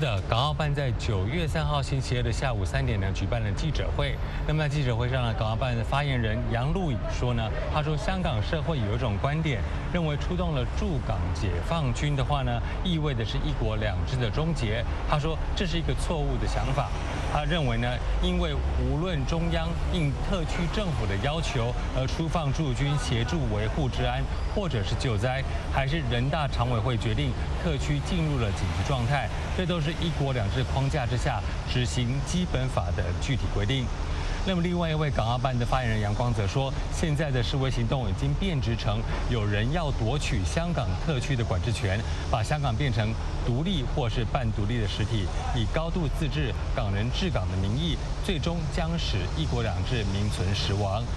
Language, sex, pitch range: English, male, 95-135 Hz